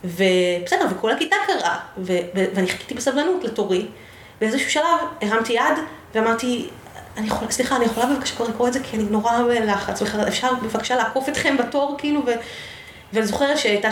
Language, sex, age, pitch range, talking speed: Hebrew, female, 30-49, 205-265 Hz, 165 wpm